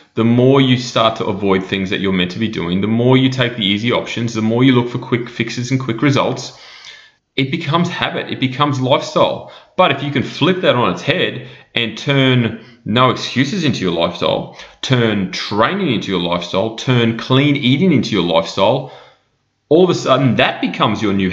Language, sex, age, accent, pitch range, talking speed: English, male, 30-49, Australian, 95-145 Hz, 200 wpm